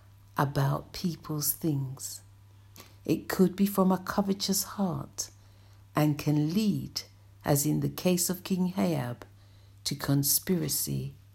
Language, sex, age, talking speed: English, female, 60-79, 115 wpm